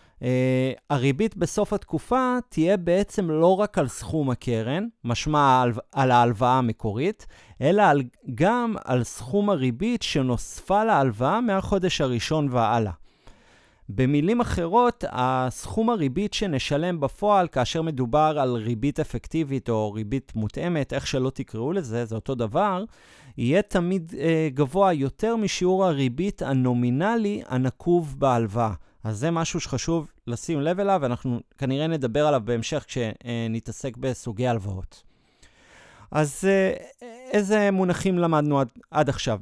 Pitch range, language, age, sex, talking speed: 125-175 Hz, Hebrew, 30-49, male, 120 wpm